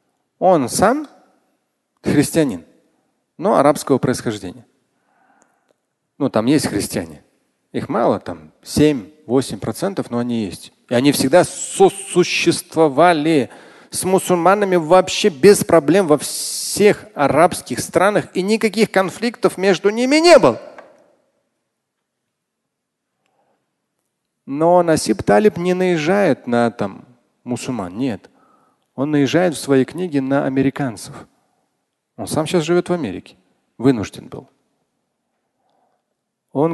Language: Russian